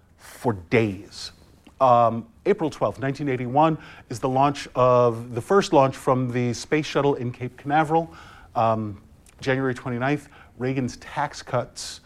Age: 40-59